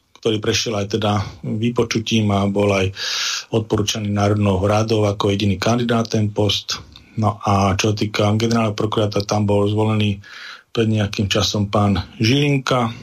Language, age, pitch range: Slovak, 40-59, 105-120 Hz